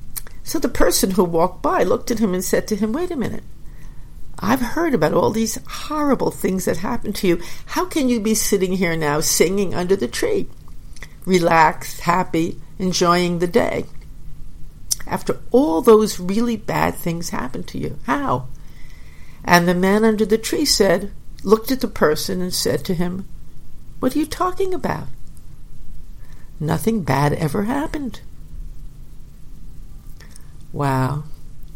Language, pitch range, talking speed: English, 165-225 Hz, 145 wpm